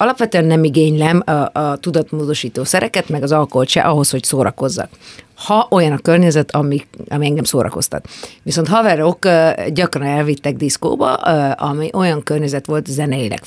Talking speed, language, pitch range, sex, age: 140 wpm, Hungarian, 140-170 Hz, female, 50-69